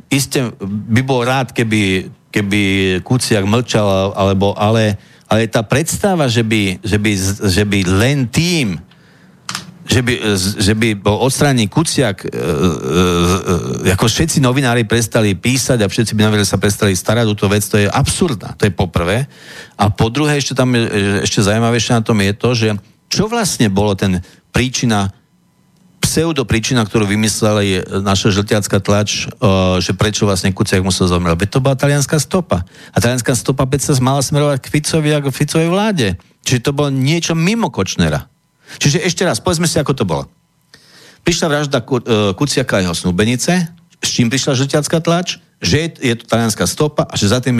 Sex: male